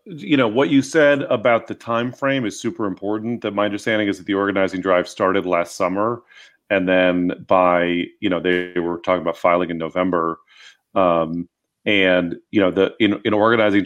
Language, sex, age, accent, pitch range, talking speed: English, male, 30-49, American, 90-110 Hz, 185 wpm